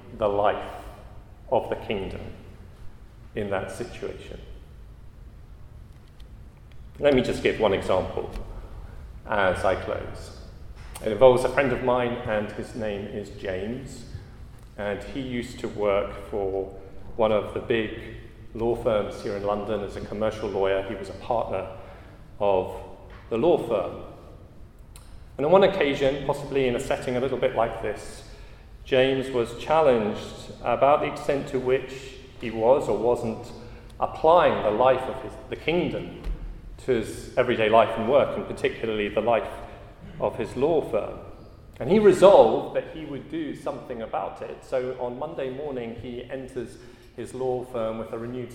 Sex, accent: male, British